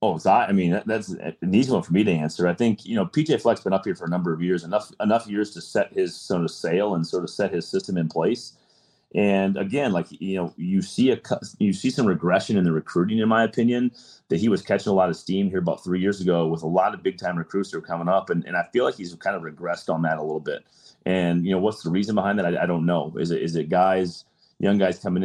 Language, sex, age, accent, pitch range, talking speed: English, male, 30-49, American, 85-100 Hz, 285 wpm